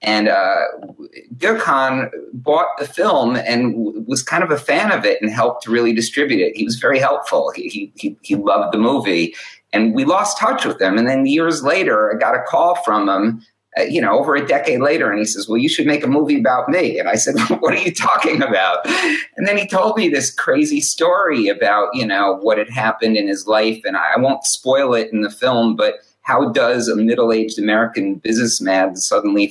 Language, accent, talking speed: English, American, 220 wpm